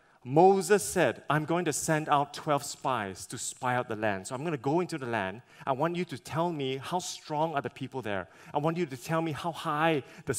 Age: 30-49